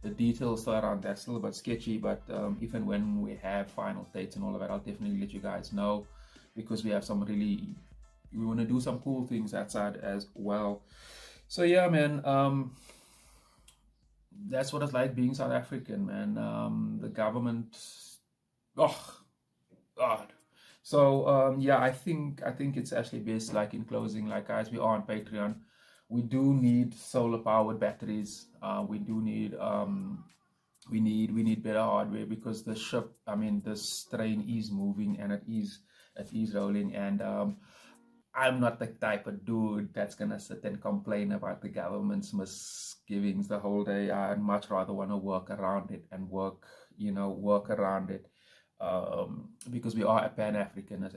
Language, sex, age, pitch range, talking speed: English, male, 30-49, 105-165 Hz, 175 wpm